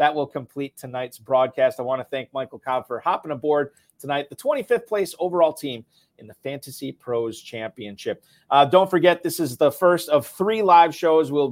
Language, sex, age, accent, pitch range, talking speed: English, male, 40-59, American, 135-170 Hz, 195 wpm